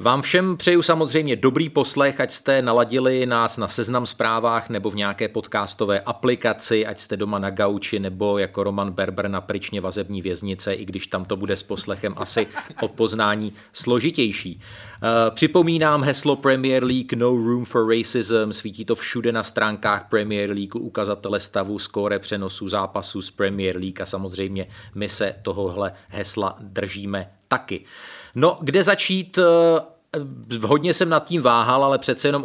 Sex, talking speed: male, 155 wpm